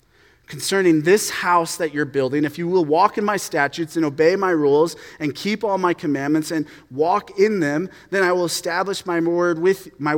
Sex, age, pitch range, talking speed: male, 30-49, 145-185 Hz, 200 wpm